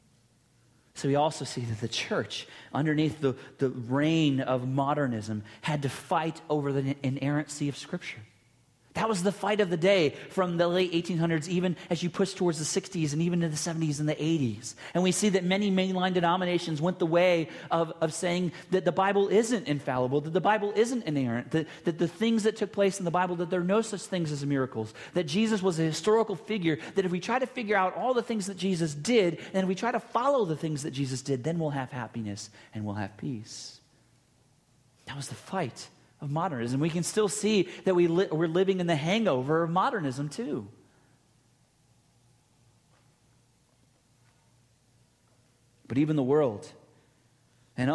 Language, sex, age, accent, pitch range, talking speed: English, male, 30-49, American, 140-180 Hz, 190 wpm